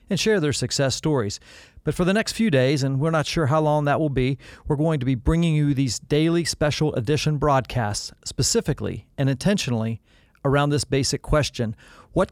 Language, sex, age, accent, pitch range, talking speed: English, male, 40-59, American, 120-155 Hz, 190 wpm